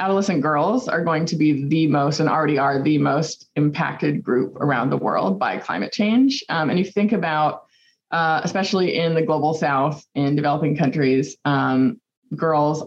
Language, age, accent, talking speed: English, 20-39, American, 170 wpm